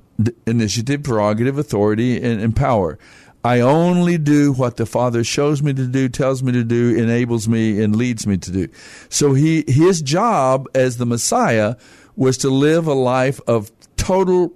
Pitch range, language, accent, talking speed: 115-140 Hz, English, American, 170 wpm